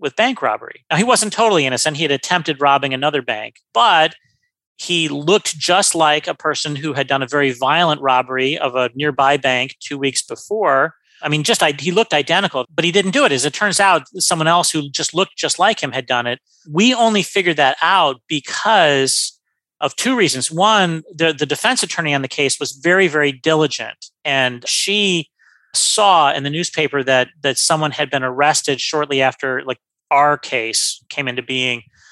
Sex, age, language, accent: male, 40-59, English, American